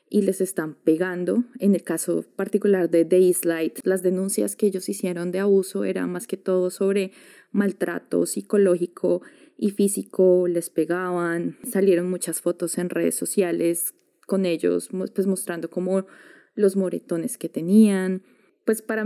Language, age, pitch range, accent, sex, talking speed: Spanish, 20-39, 180-215 Hz, Colombian, female, 140 wpm